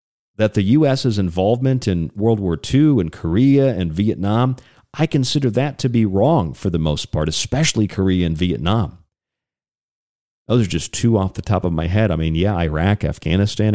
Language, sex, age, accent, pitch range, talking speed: English, male, 40-59, American, 90-125 Hz, 180 wpm